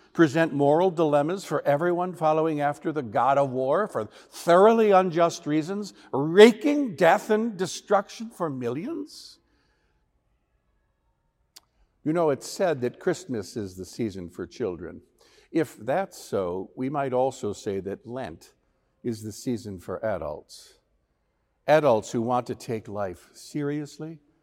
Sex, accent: male, American